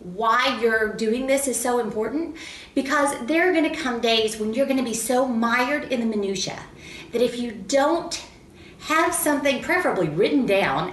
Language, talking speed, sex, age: English, 170 wpm, female, 30-49